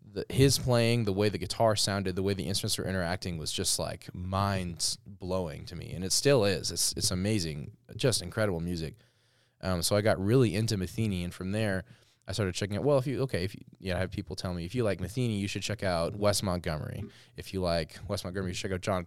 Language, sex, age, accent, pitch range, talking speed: English, male, 20-39, American, 85-110 Hz, 245 wpm